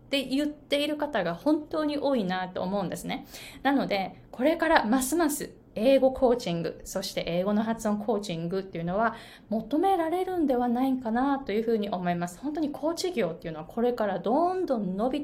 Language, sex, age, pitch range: Japanese, female, 20-39, 195-290 Hz